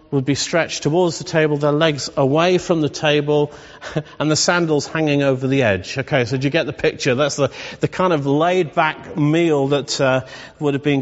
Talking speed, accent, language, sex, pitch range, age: 205 wpm, British, English, male, 150-185 Hz, 40-59